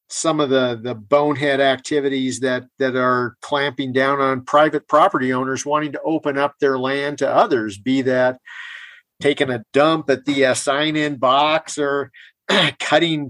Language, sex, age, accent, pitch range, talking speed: English, male, 50-69, American, 125-145 Hz, 155 wpm